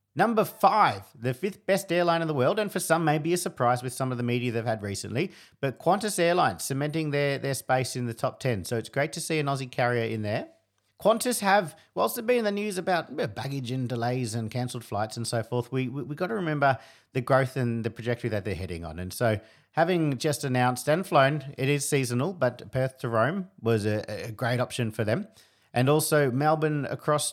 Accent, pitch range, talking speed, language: Australian, 110-145 Hz, 220 wpm, English